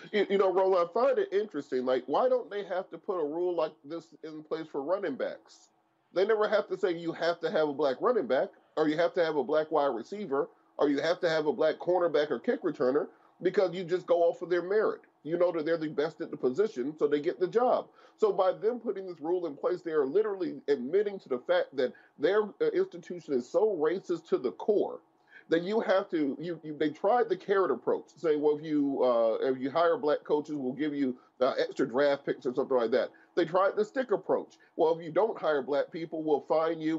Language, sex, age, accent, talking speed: English, male, 30-49, American, 240 wpm